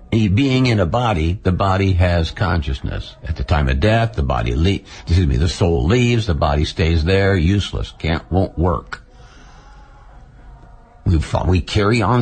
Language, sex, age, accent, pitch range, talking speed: English, male, 60-79, American, 85-115 Hz, 150 wpm